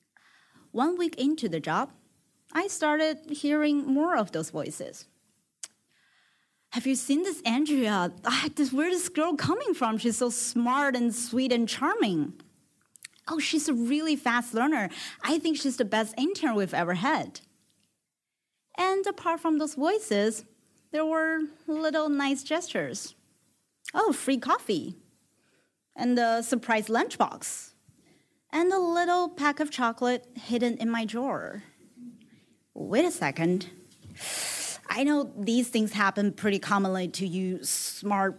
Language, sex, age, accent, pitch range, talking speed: English, female, 30-49, American, 225-315 Hz, 135 wpm